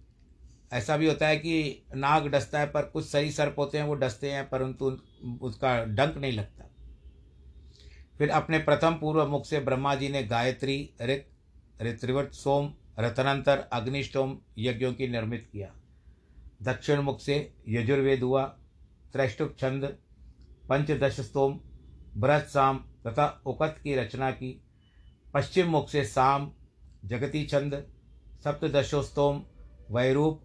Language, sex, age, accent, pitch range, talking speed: Hindi, male, 60-79, native, 105-140 Hz, 125 wpm